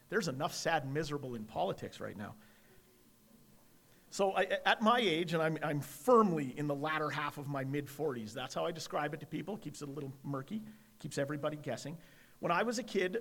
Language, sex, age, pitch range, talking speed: English, male, 40-59, 145-175 Hz, 200 wpm